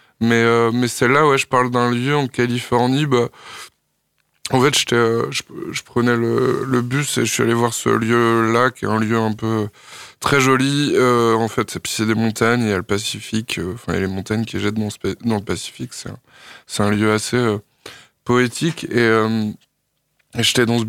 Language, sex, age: French, male, 20-39